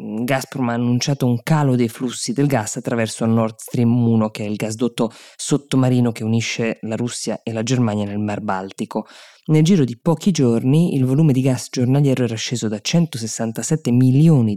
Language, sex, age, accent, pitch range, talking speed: Italian, female, 20-39, native, 115-140 Hz, 175 wpm